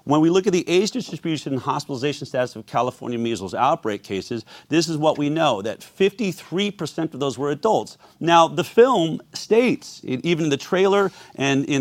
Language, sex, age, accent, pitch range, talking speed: English, male, 40-59, American, 140-195 Hz, 185 wpm